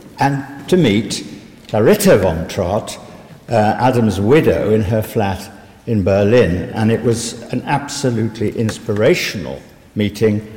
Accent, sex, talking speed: British, male, 120 wpm